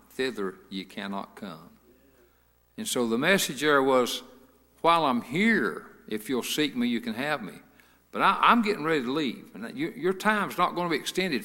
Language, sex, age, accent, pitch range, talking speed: English, male, 60-79, American, 130-190 Hz, 195 wpm